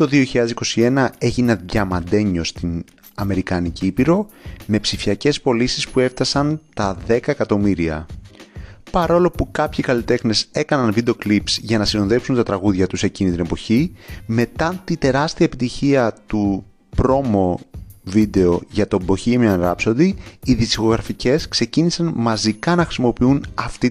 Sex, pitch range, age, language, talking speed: male, 100-130 Hz, 30-49, Greek, 125 wpm